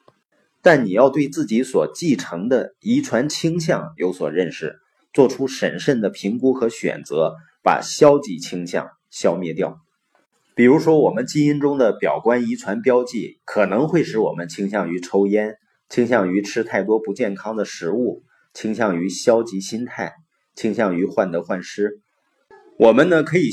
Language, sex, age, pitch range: Chinese, male, 30-49, 105-155 Hz